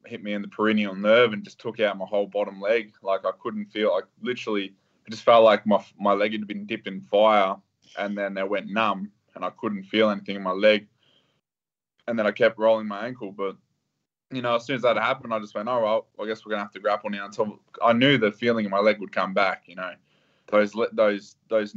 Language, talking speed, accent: English, 250 wpm, Australian